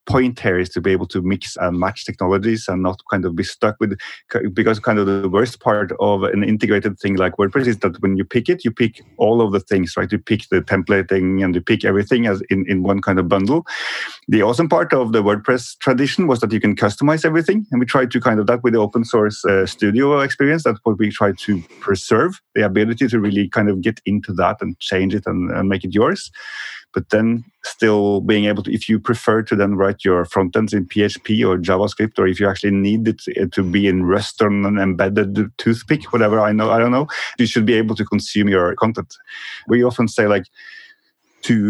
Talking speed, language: 230 wpm, English